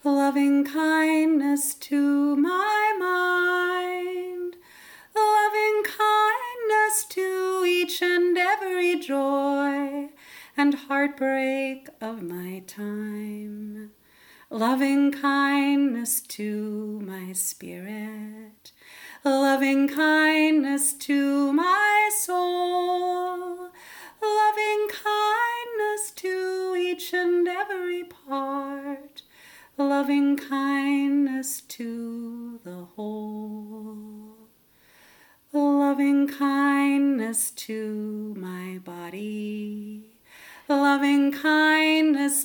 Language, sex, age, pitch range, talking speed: English, female, 40-59, 235-355 Hz, 65 wpm